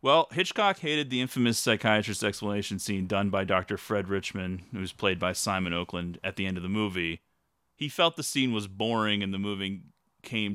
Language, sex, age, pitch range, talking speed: English, male, 30-49, 90-115 Hz, 200 wpm